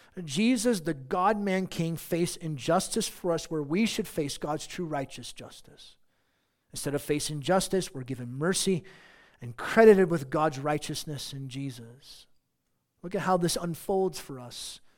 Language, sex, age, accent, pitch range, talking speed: English, male, 40-59, American, 140-200 Hz, 150 wpm